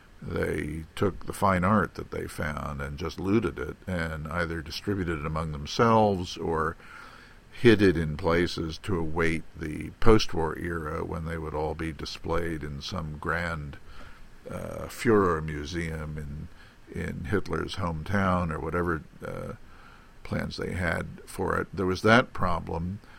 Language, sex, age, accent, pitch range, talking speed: English, male, 50-69, American, 80-90 Hz, 145 wpm